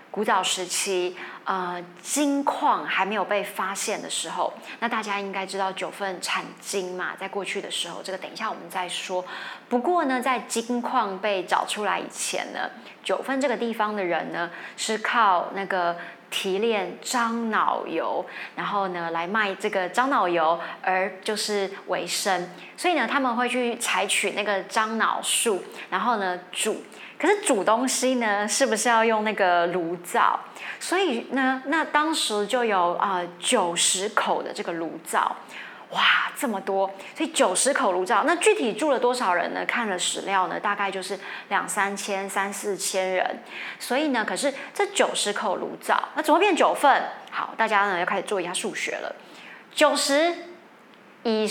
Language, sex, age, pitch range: Chinese, female, 20-39, 190-255 Hz